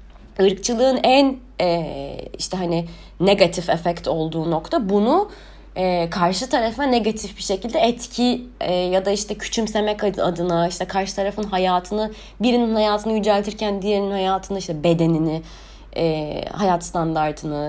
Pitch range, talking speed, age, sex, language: 170-240 Hz, 125 wpm, 20-39, female, English